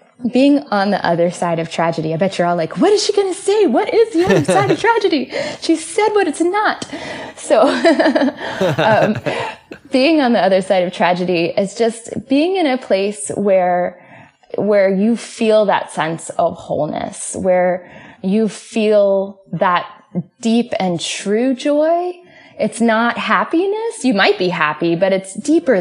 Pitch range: 180-255 Hz